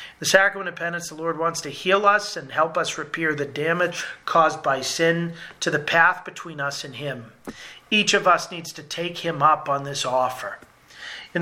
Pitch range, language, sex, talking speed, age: 155-185 Hz, English, male, 200 wpm, 40-59